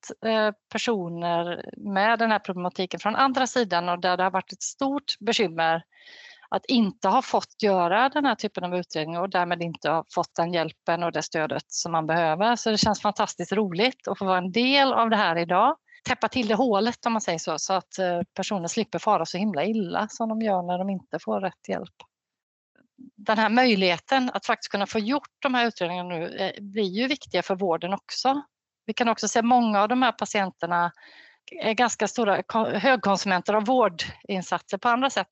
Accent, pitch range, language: native, 175-235 Hz, Swedish